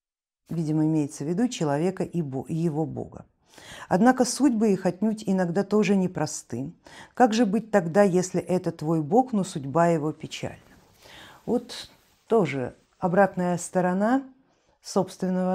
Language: Russian